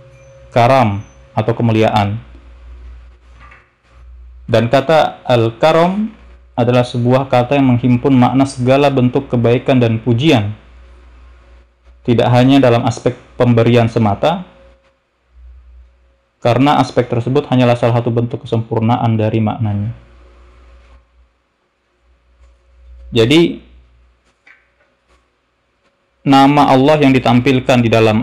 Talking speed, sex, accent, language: 85 wpm, male, native, Indonesian